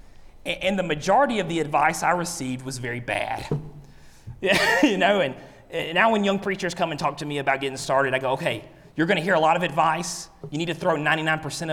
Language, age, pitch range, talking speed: English, 30-49, 140-205 Hz, 215 wpm